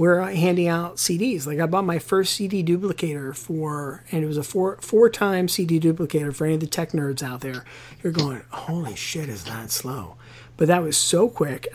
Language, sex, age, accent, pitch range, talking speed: English, male, 50-69, American, 140-185 Hz, 210 wpm